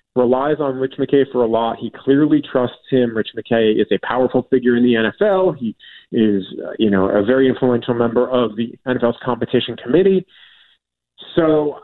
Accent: American